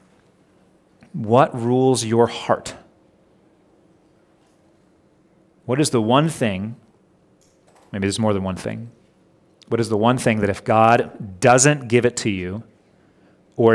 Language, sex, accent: English, male, American